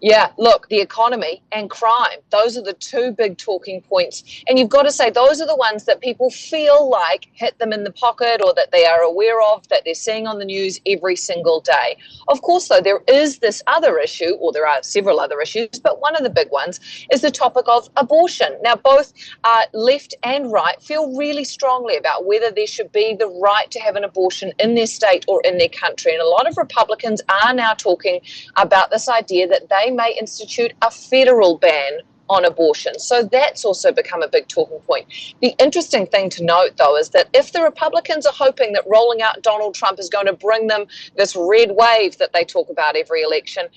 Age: 30-49